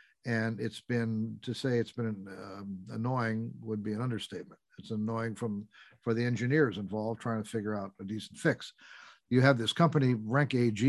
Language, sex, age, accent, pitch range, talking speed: English, male, 50-69, American, 105-125 Hz, 185 wpm